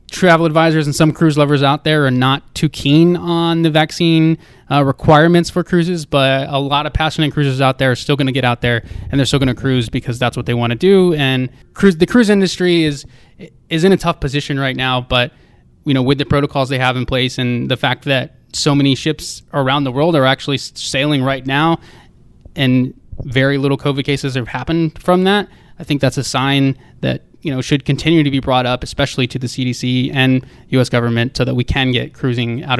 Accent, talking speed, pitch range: American, 225 wpm, 130-155 Hz